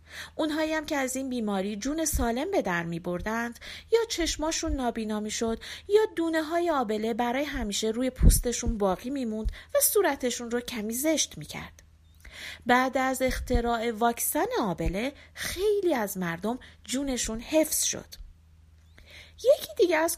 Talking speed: 135 wpm